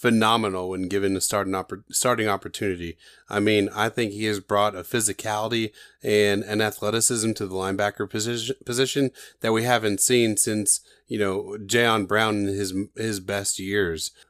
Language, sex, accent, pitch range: English, male, American, 100-130 Hz